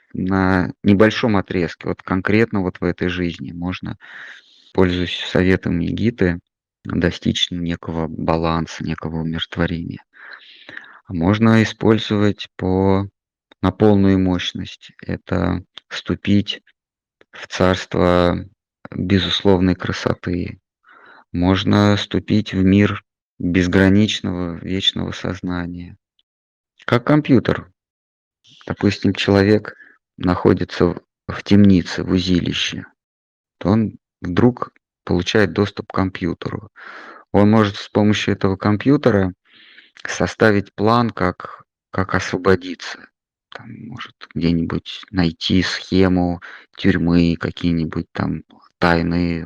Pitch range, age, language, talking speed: 85-100 Hz, 20-39, Russian, 85 wpm